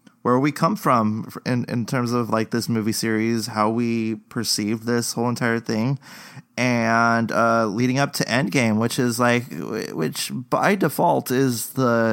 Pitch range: 110-125 Hz